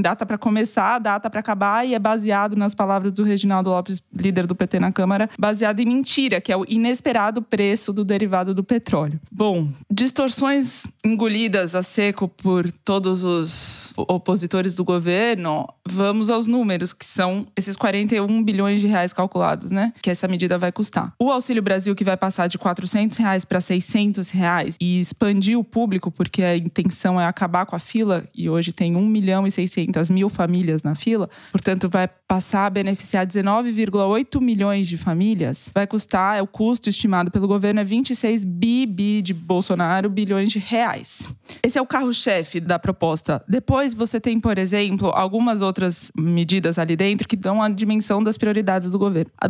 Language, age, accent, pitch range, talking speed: Portuguese, 20-39, Brazilian, 185-220 Hz, 175 wpm